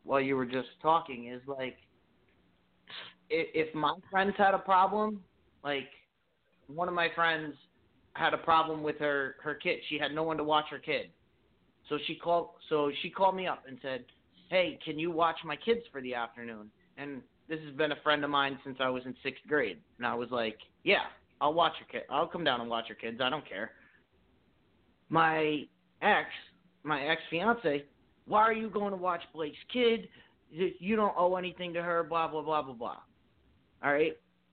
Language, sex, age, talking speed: English, male, 30-49, 195 wpm